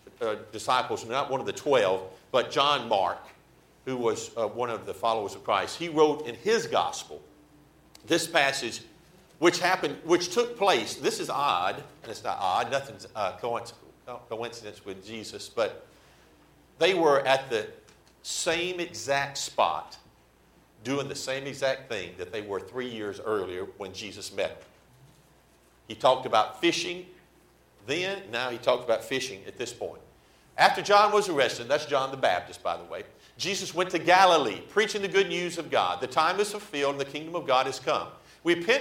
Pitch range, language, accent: 130-185 Hz, English, American